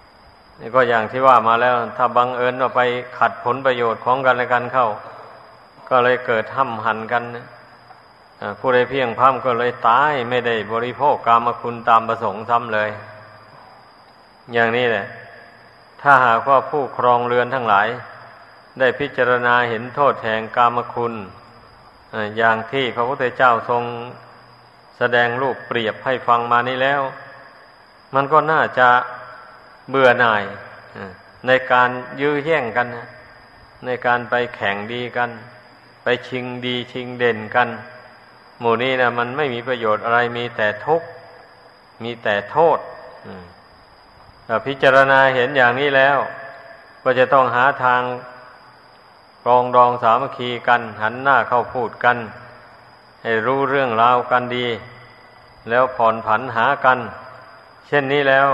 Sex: male